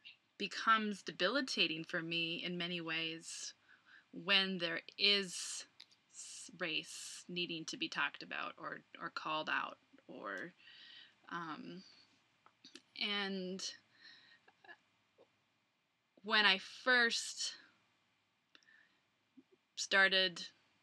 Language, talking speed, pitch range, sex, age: English, 80 wpm, 175-205 Hz, female, 20-39